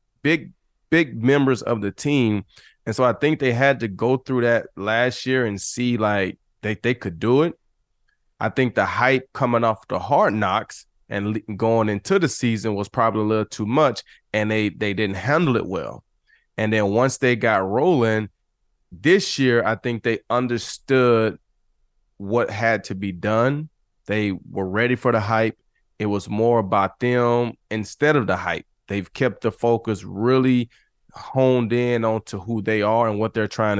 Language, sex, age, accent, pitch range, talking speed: English, male, 20-39, American, 105-125 Hz, 180 wpm